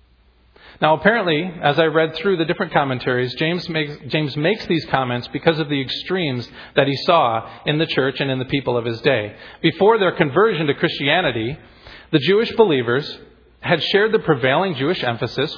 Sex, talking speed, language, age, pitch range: male, 175 wpm, English, 40-59, 110-165 Hz